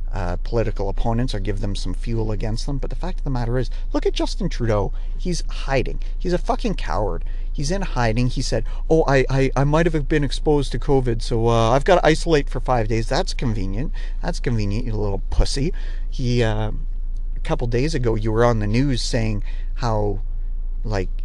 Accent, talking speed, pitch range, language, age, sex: American, 205 wpm, 105-135 Hz, English, 50-69, male